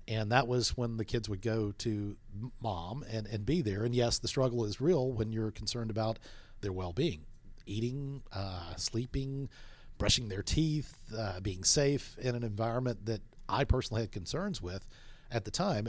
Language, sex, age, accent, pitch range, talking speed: English, male, 40-59, American, 105-135 Hz, 180 wpm